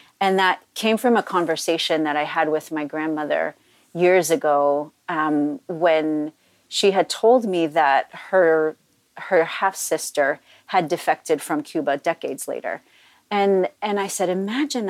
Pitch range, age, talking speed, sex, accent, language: 170-230 Hz, 40-59, 140 wpm, female, American, English